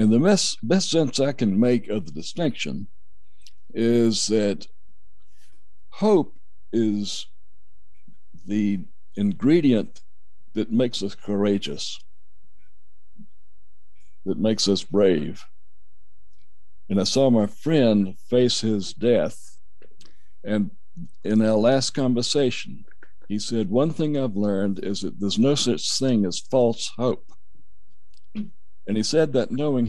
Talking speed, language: 115 wpm, English